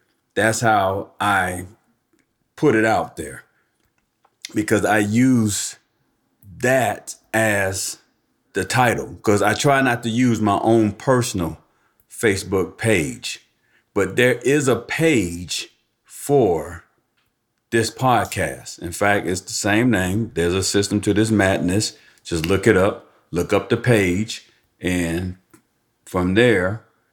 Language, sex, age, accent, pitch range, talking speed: English, male, 40-59, American, 90-110 Hz, 125 wpm